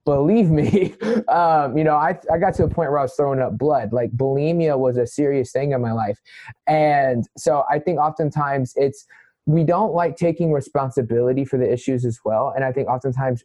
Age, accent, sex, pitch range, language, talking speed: 20-39, American, male, 125-150 Hz, English, 205 wpm